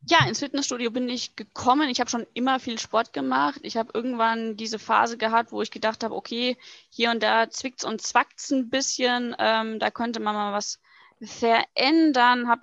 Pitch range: 220-275 Hz